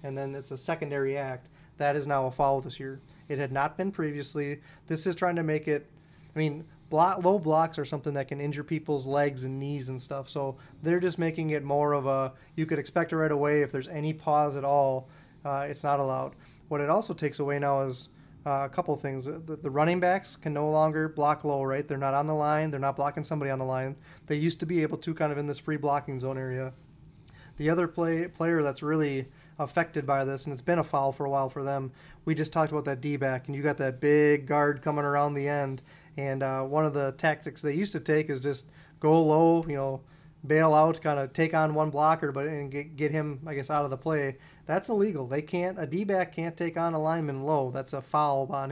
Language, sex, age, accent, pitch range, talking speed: English, male, 30-49, American, 140-155 Hz, 245 wpm